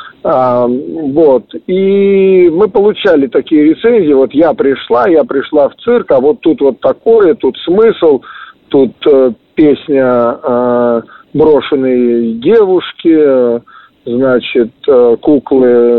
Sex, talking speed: male, 115 wpm